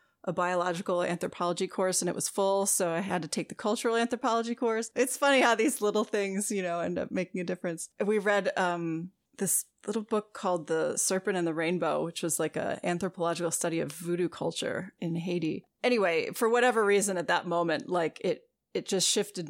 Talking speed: 200 wpm